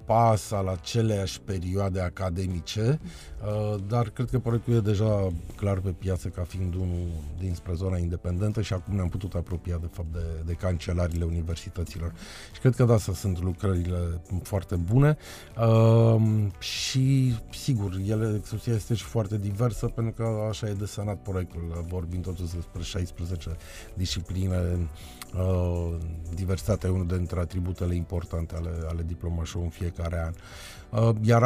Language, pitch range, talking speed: Romanian, 90-110 Hz, 135 wpm